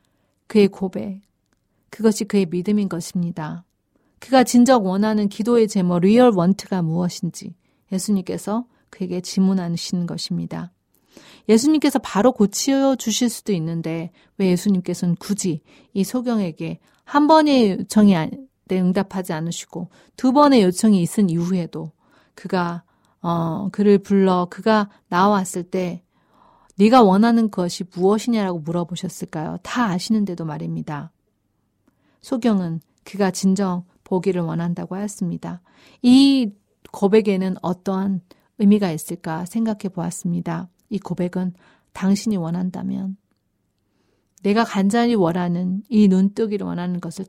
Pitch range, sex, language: 170-210 Hz, female, Korean